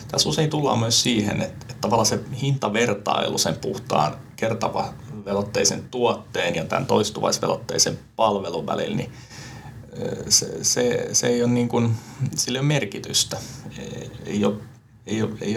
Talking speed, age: 140 wpm, 30-49